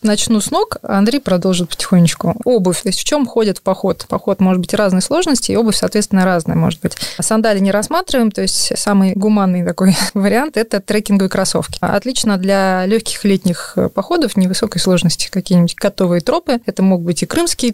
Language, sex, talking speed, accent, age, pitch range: Russian, female, 175 wpm, native, 20-39, 180-220 Hz